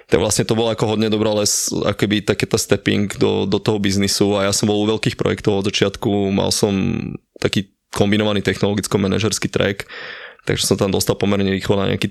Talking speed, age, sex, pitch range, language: 190 wpm, 20-39, male, 100-105 Hz, Slovak